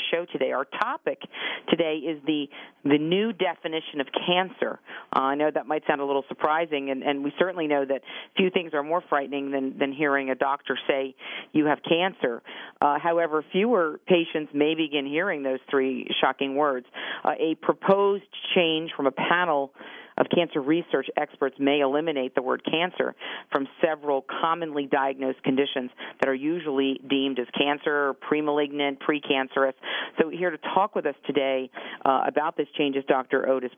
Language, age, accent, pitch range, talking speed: English, 40-59, American, 135-155 Hz, 170 wpm